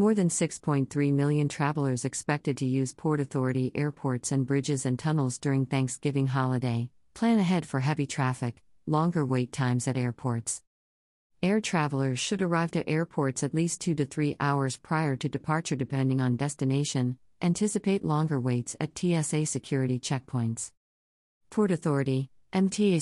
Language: English